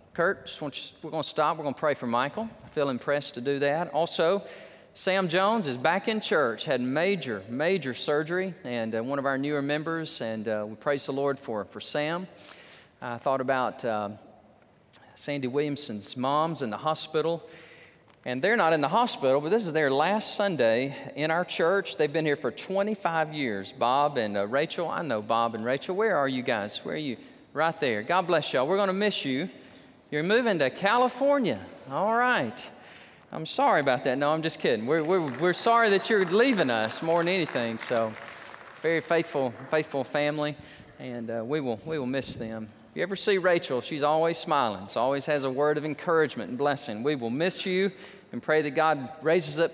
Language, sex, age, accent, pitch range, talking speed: English, male, 40-59, American, 125-175 Hz, 205 wpm